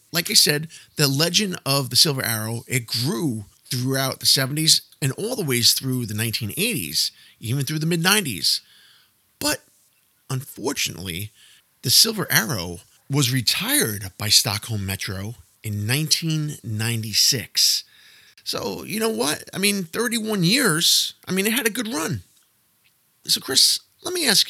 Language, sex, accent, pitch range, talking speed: English, male, American, 115-175 Hz, 140 wpm